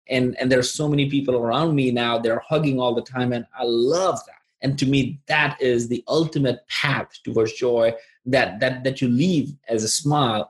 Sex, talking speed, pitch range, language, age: male, 205 wpm, 130-195 Hz, English, 20-39